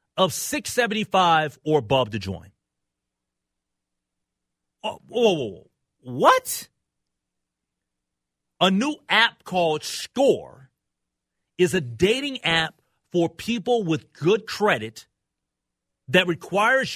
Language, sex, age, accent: English, male, 40-59, American